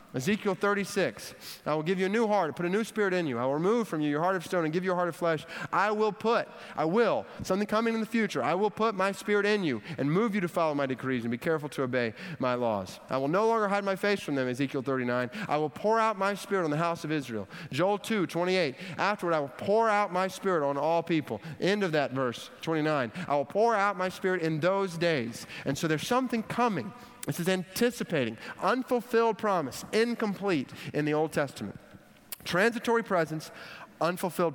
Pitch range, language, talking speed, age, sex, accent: 145-200 Hz, English, 225 wpm, 30-49, male, American